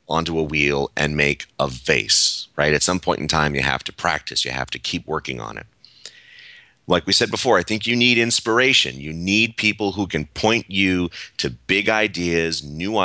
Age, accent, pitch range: 30-49, American, 75-100 Hz